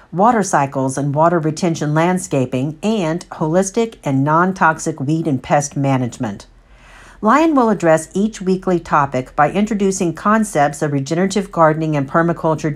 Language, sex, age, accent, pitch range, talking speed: English, female, 50-69, American, 145-185 Hz, 130 wpm